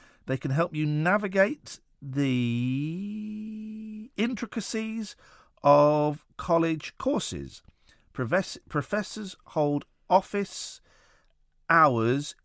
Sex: male